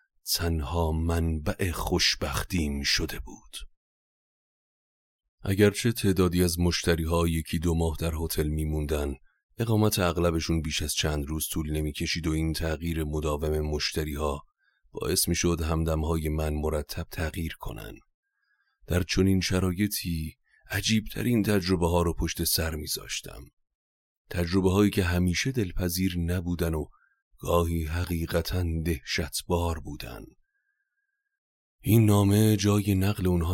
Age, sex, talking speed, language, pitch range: 40-59, male, 110 wpm, Persian, 80-95 Hz